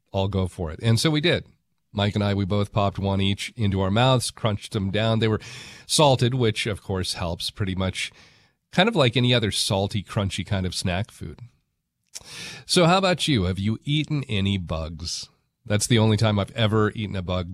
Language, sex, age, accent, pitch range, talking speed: English, male, 40-59, American, 95-125 Hz, 205 wpm